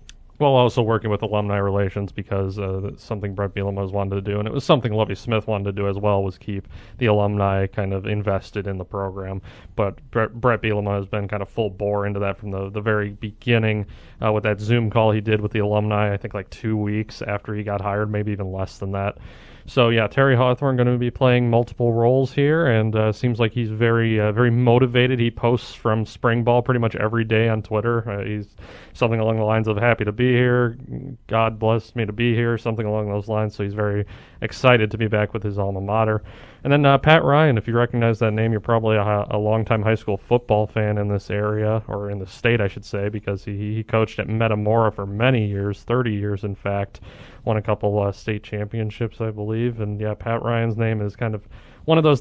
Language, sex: English, male